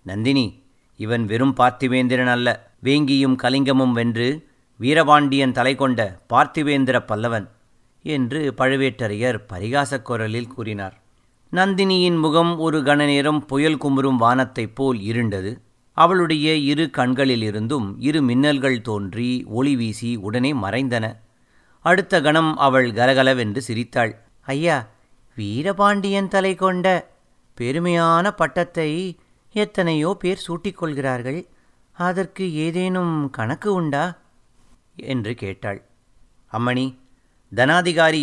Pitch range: 125-170 Hz